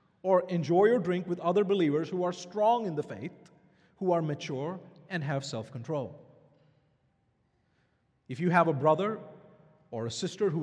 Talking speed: 160 wpm